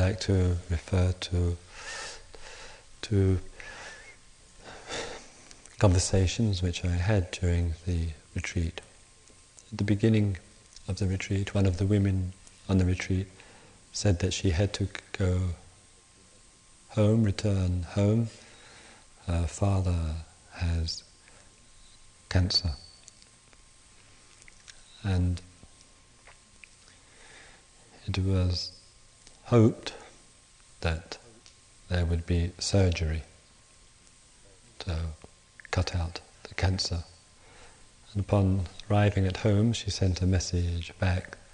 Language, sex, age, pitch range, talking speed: English, male, 40-59, 90-100 Hz, 90 wpm